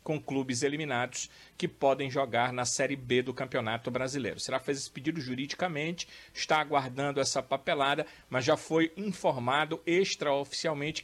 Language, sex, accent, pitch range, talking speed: Portuguese, male, Brazilian, 130-160 Hz, 145 wpm